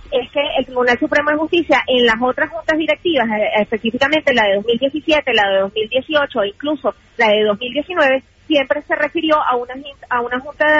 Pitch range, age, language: 245-305 Hz, 30-49, Spanish